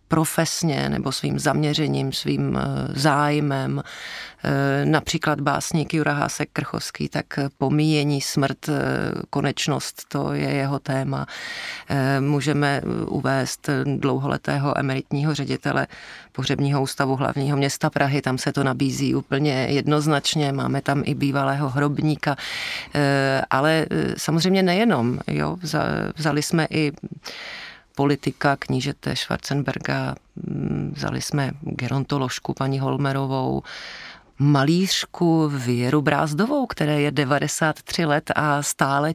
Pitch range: 135-155 Hz